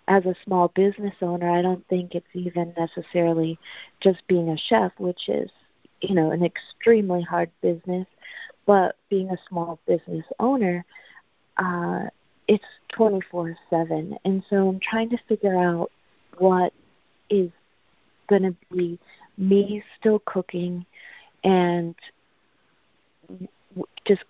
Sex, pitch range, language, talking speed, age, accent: female, 175-195 Hz, English, 120 wpm, 40-59, American